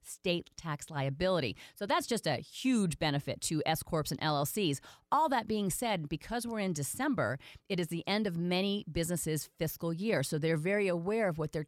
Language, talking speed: English, 195 wpm